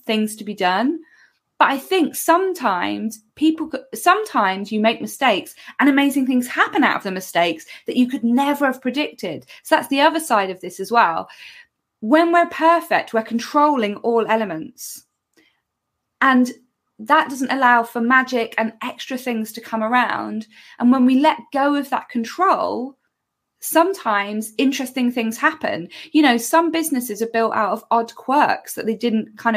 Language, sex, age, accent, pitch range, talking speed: English, female, 20-39, British, 215-275 Hz, 165 wpm